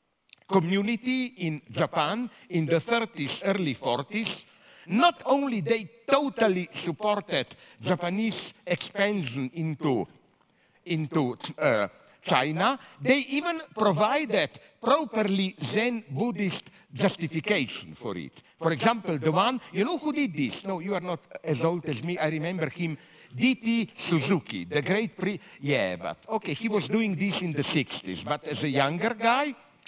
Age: 50-69